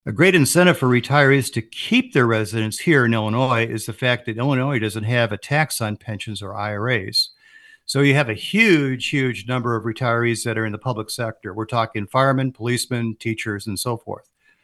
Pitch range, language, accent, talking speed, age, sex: 110-140 Hz, English, American, 195 wpm, 50-69, male